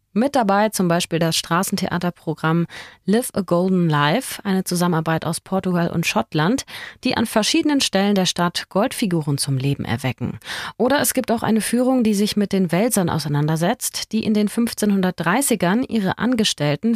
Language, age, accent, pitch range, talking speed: German, 30-49, German, 170-235 Hz, 155 wpm